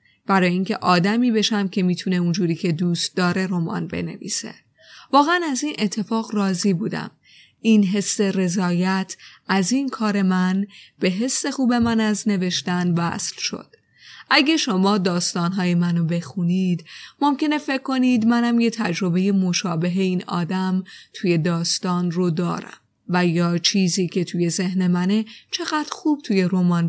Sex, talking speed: female, 140 wpm